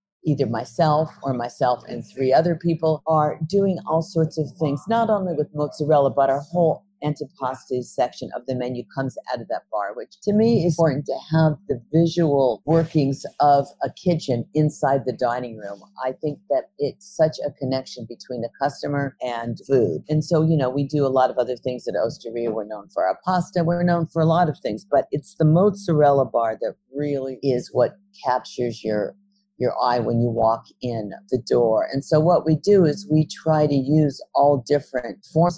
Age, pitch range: 50-69, 125-160 Hz